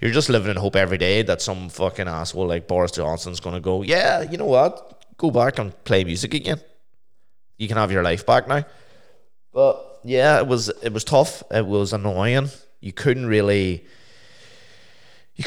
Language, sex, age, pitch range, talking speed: English, male, 20-39, 90-110 Hz, 180 wpm